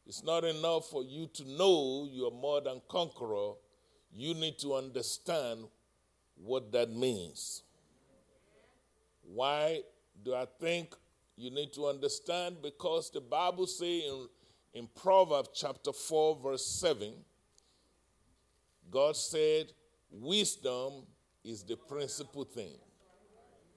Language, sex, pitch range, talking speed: English, male, 130-175 Hz, 110 wpm